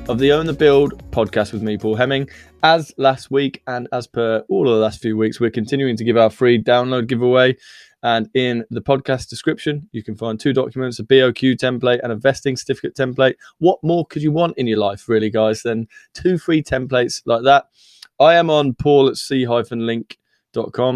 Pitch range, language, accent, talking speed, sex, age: 115-140 Hz, English, British, 195 wpm, male, 20-39